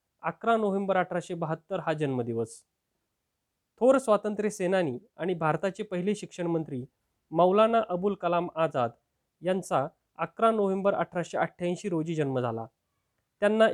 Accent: native